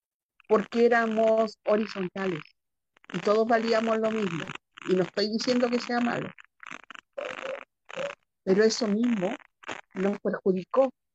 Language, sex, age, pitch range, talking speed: Spanish, female, 50-69, 185-235 Hz, 110 wpm